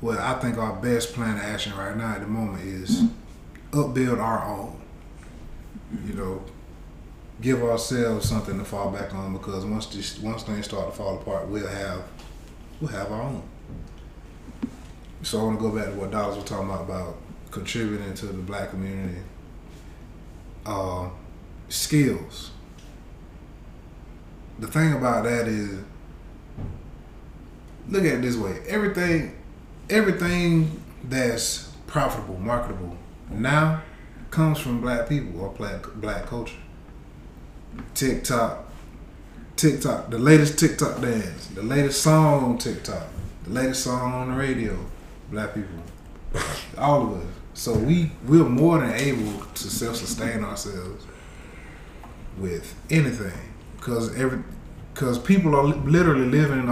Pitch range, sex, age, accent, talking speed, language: 95-130 Hz, male, 20-39, American, 130 wpm, English